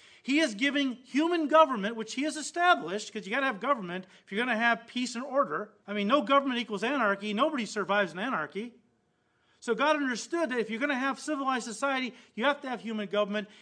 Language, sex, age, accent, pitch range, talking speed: English, male, 40-59, American, 215-280 Hz, 225 wpm